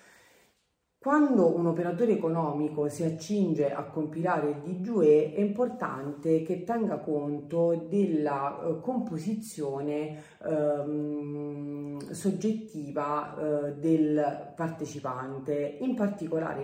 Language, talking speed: Italian, 85 wpm